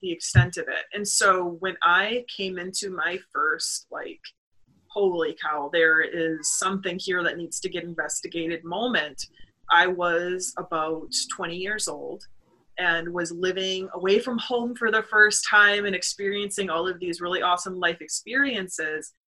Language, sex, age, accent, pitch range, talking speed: English, female, 20-39, American, 170-205 Hz, 155 wpm